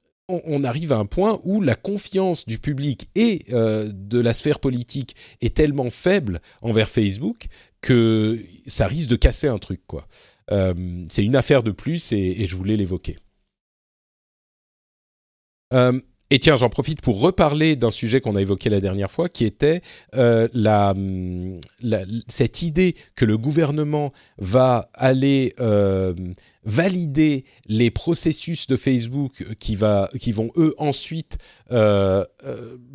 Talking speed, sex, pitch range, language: 150 wpm, male, 105-145 Hz, French